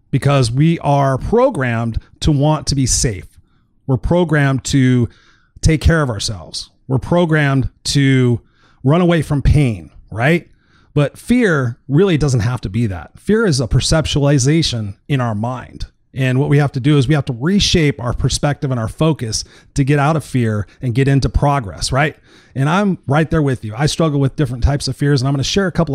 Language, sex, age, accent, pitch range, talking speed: English, male, 30-49, American, 120-150 Hz, 195 wpm